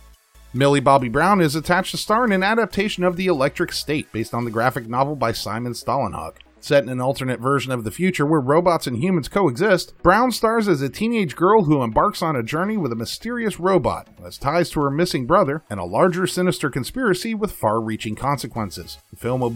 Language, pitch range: English, 125-185 Hz